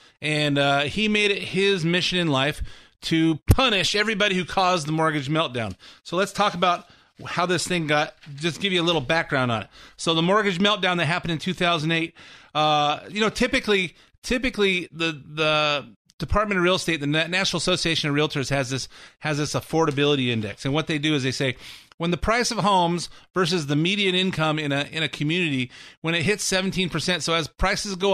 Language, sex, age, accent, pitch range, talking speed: English, male, 30-49, American, 150-185 Hz, 200 wpm